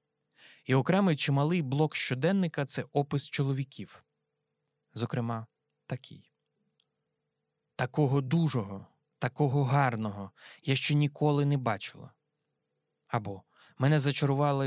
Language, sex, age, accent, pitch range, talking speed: Ukrainian, male, 20-39, native, 120-150 Hz, 95 wpm